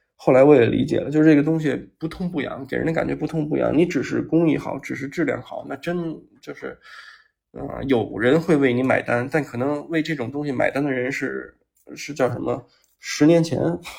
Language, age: Chinese, 20-39